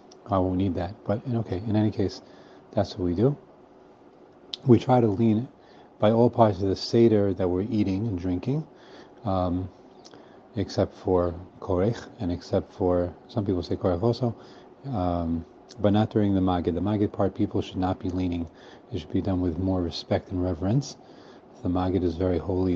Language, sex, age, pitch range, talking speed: English, male, 40-59, 90-110 Hz, 180 wpm